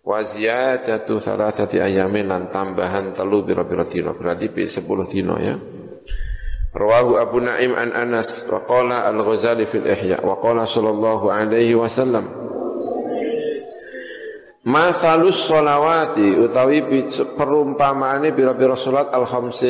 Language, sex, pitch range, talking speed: Indonesian, male, 115-155 Hz, 115 wpm